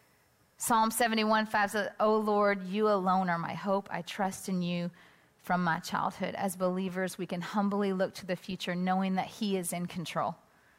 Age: 30-49